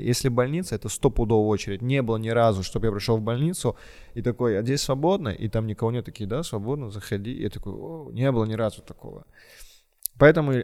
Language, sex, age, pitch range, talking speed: Russian, male, 20-39, 105-120 Hz, 215 wpm